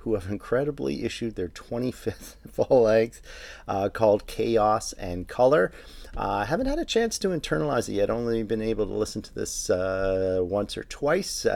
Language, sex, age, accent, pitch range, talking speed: English, male, 40-59, American, 95-115 Hz, 175 wpm